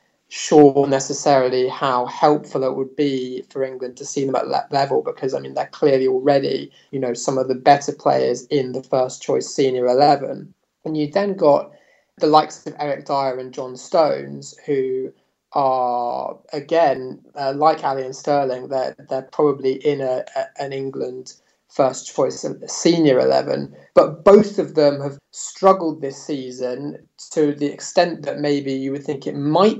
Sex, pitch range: male, 130-150 Hz